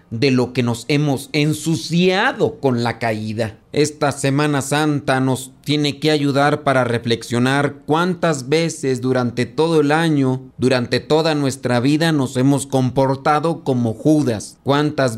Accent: Mexican